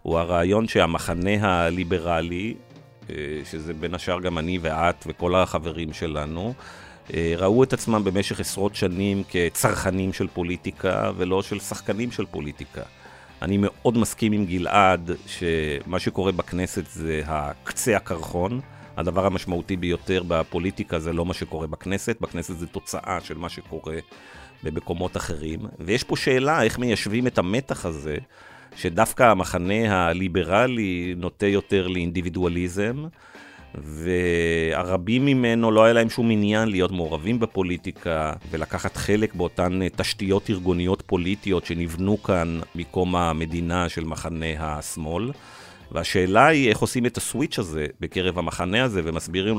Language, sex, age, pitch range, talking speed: Hebrew, male, 40-59, 85-105 Hz, 125 wpm